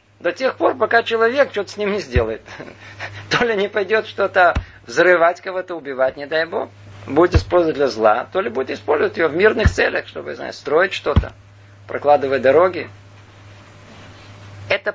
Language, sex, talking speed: Russian, male, 160 wpm